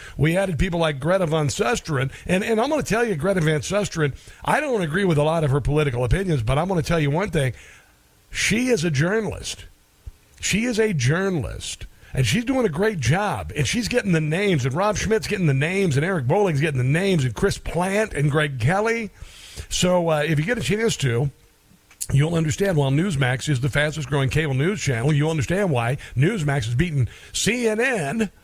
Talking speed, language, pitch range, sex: 205 wpm, English, 135-180 Hz, male